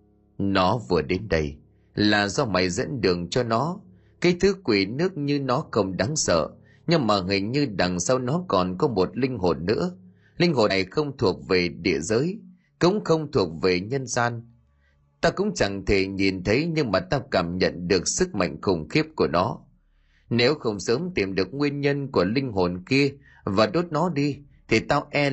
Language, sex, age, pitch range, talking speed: Vietnamese, male, 30-49, 90-145 Hz, 195 wpm